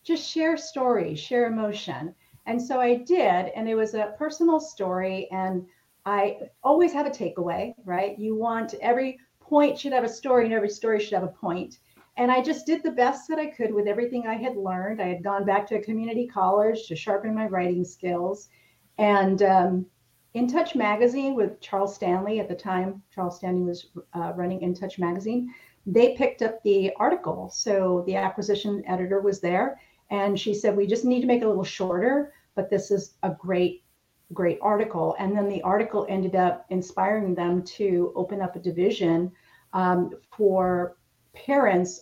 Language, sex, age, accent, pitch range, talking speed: English, female, 40-59, American, 180-230 Hz, 185 wpm